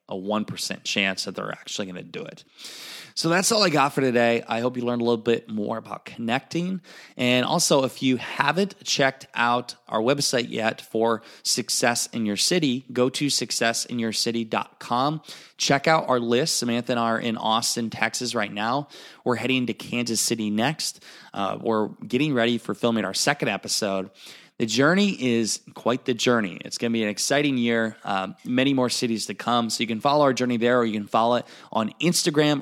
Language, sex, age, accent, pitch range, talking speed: English, male, 20-39, American, 110-130 Hz, 195 wpm